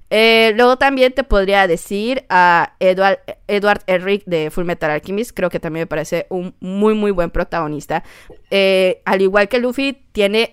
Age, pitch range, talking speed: 30-49, 175-230 Hz, 170 wpm